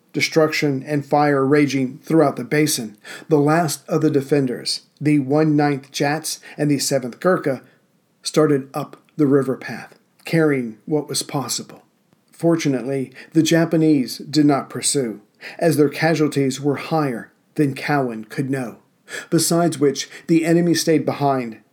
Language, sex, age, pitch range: English, male, 50-69, 140-160 Hz